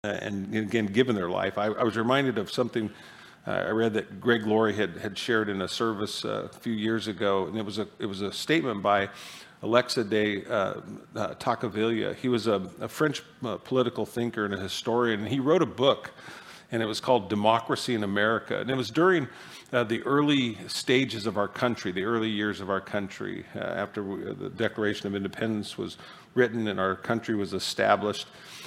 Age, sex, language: 50-69, male, English